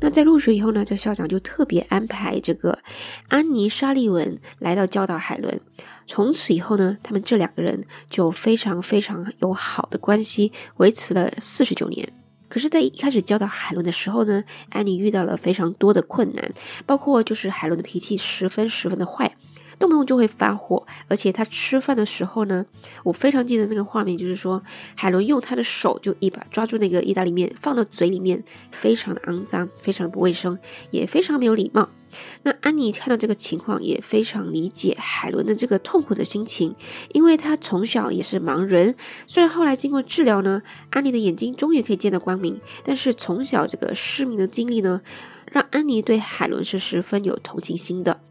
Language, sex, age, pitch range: English, female, 20-39, 185-235 Hz